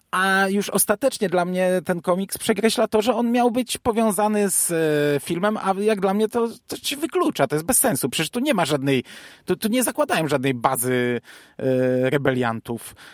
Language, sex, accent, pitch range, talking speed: Polish, male, native, 130-190 Hz, 185 wpm